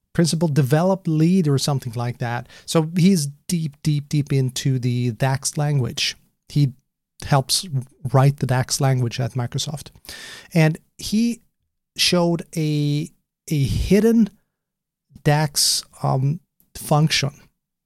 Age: 30-49